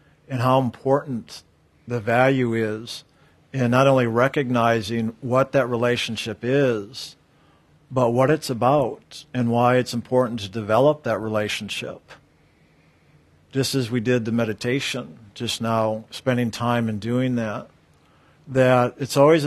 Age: 50-69